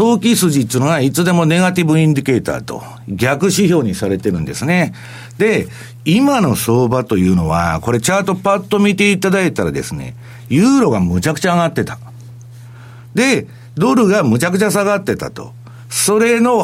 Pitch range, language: 120-190 Hz, Japanese